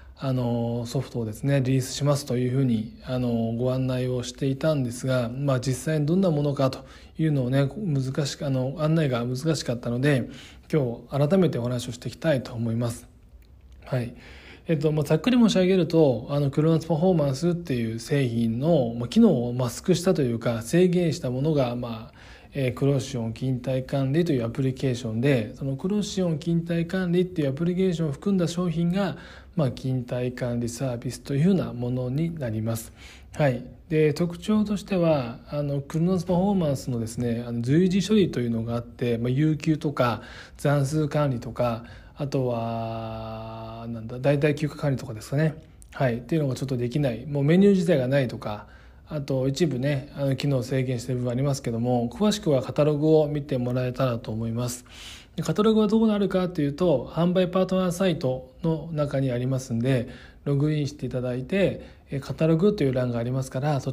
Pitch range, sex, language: 120-160 Hz, male, Japanese